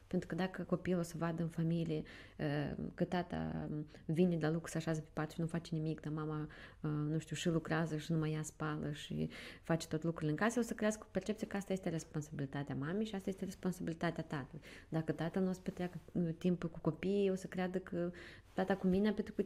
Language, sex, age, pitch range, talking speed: Romanian, female, 20-39, 155-190 Hz, 225 wpm